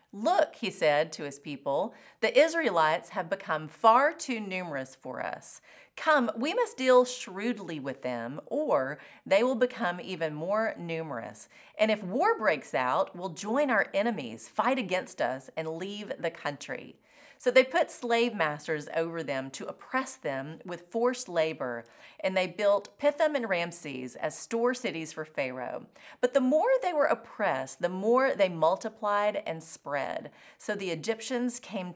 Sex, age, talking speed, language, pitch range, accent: female, 40-59, 160 wpm, English, 165-245 Hz, American